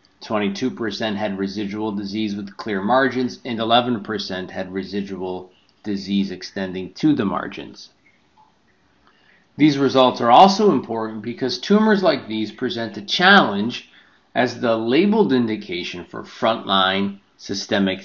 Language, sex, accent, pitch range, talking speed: English, male, American, 95-120 Hz, 125 wpm